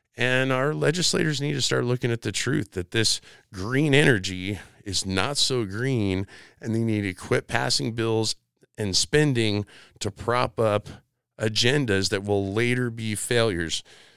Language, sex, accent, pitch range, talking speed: English, male, American, 100-125 Hz, 155 wpm